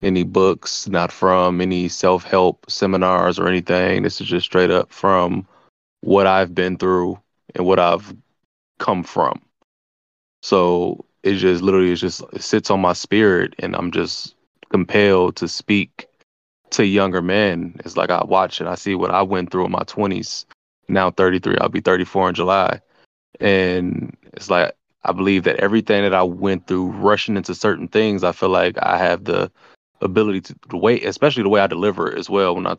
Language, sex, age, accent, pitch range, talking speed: English, male, 20-39, American, 90-100 Hz, 180 wpm